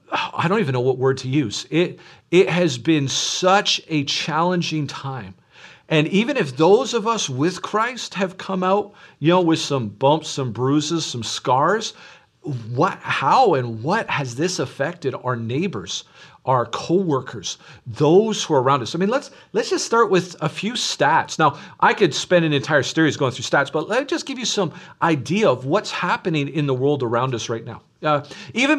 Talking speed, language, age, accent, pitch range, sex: 190 wpm, English, 40-59, American, 135-185 Hz, male